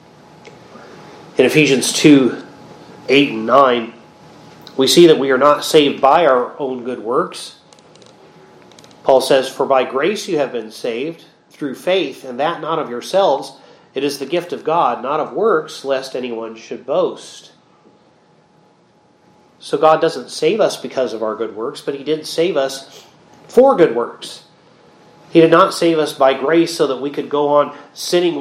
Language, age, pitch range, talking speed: English, 40-59, 140-185 Hz, 165 wpm